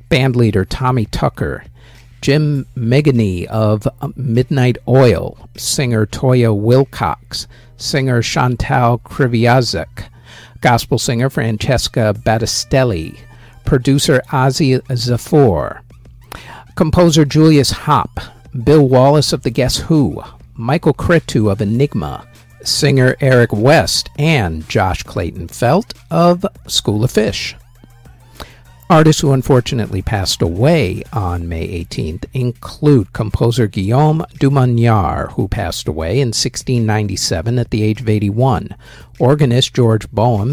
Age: 50-69